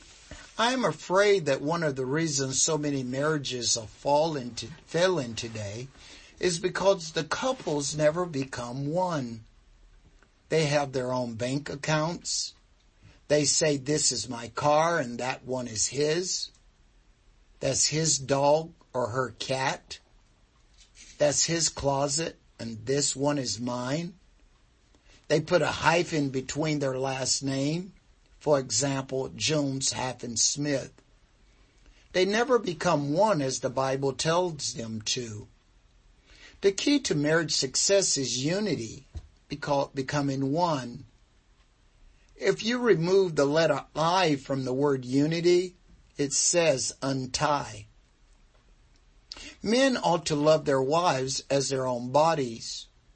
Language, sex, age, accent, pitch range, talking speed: English, male, 60-79, American, 125-155 Hz, 125 wpm